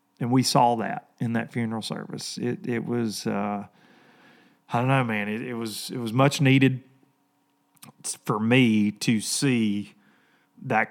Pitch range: 120-165 Hz